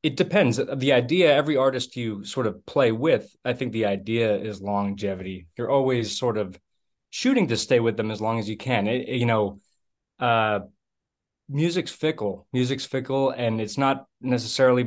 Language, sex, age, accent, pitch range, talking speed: English, male, 20-39, American, 110-135 Hz, 175 wpm